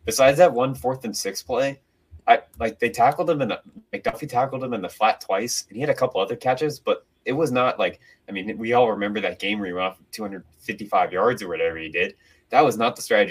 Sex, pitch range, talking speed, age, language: male, 105-135 Hz, 255 wpm, 20-39, English